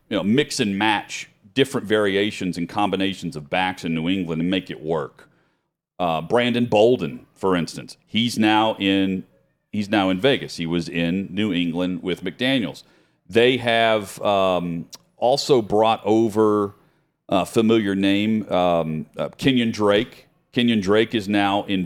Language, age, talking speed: English, 40-59, 150 wpm